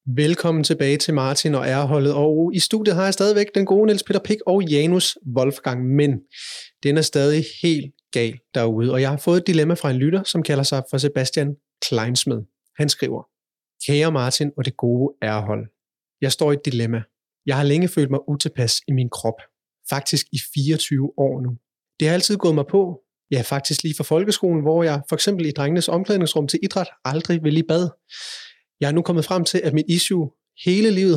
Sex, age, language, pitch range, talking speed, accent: male, 30-49, Danish, 140-175 Hz, 200 wpm, native